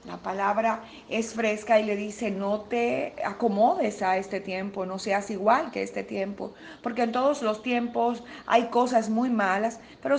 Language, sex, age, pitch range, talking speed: Spanish, female, 40-59, 205-245 Hz, 170 wpm